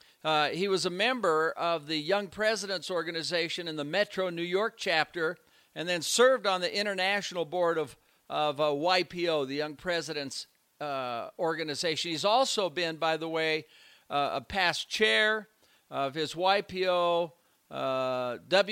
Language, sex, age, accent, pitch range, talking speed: English, male, 50-69, American, 160-200 Hz, 145 wpm